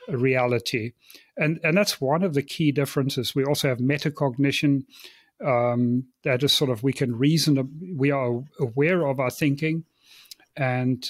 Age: 40-59